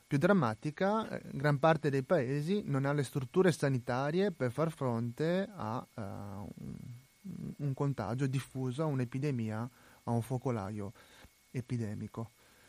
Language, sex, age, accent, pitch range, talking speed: Italian, male, 30-49, native, 120-150 Hz, 130 wpm